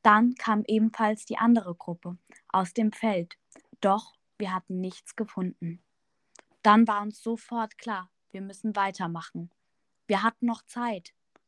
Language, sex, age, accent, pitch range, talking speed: German, female, 10-29, German, 190-225 Hz, 135 wpm